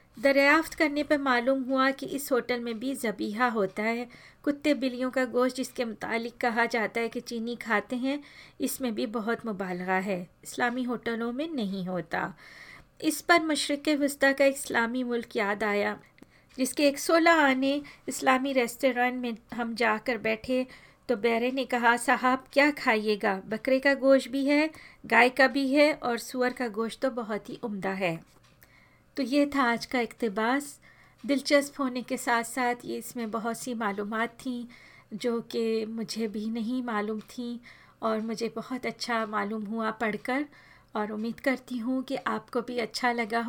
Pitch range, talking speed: 225-265 Hz, 165 wpm